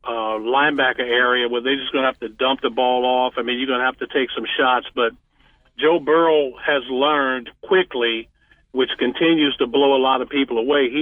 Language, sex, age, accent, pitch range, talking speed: English, male, 50-69, American, 125-150 Hz, 220 wpm